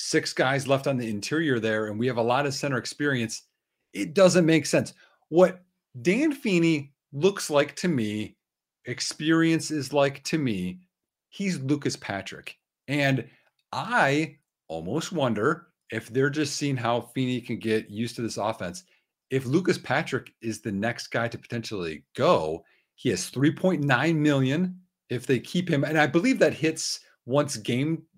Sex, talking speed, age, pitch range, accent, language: male, 160 wpm, 40-59, 120-170 Hz, American, English